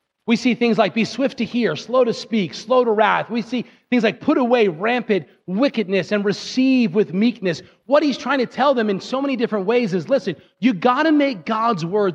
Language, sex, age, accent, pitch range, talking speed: English, male, 30-49, American, 195-250 Hz, 220 wpm